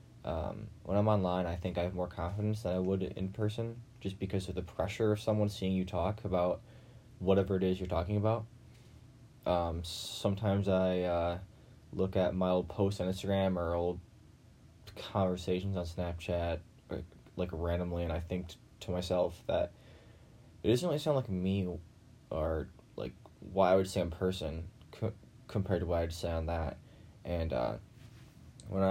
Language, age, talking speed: English, 10-29, 170 wpm